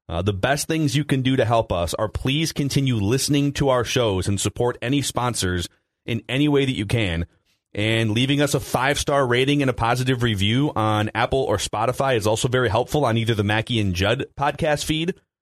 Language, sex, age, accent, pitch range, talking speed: English, male, 30-49, American, 95-125 Hz, 205 wpm